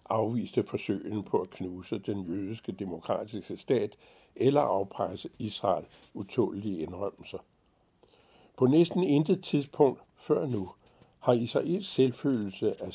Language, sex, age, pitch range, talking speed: Danish, male, 60-79, 110-135 Hz, 110 wpm